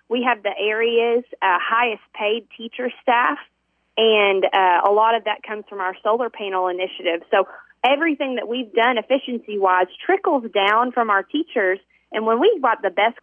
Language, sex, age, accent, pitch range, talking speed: English, female, 20-39, American, 195-245 Hz, 170 wpm